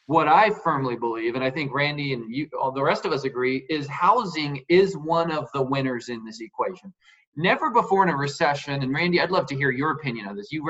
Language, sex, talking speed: English, male, 235 wpm